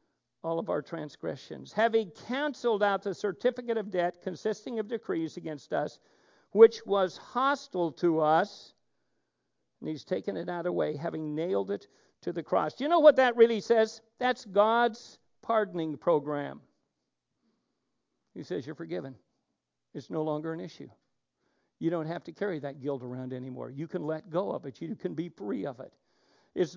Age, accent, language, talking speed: 60-79, American, English, 170 wpm